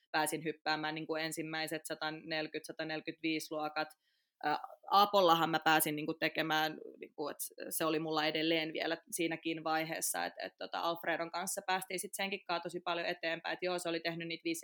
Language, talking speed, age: Finnish, 125 wpm, 20-39